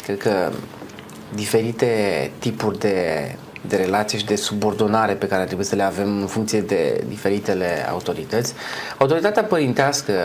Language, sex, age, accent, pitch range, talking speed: Romanian, male, 30-49, native, 110-150 Hz, 135 wpm